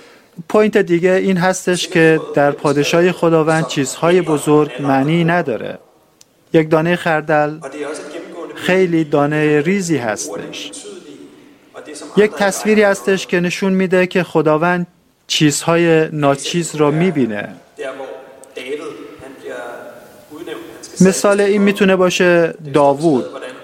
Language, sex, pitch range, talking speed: Persian, male, 150-190 Hz, 90 wpm